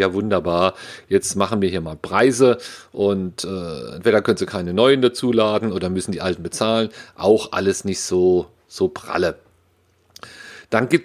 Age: 40-59